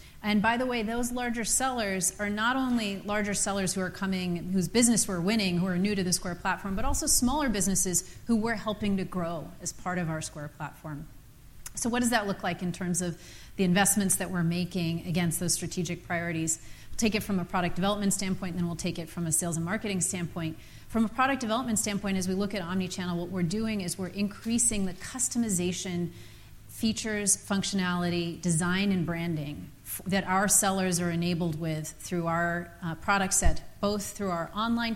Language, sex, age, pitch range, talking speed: English, female, 30-49, 170-205 Hz, 200 wpm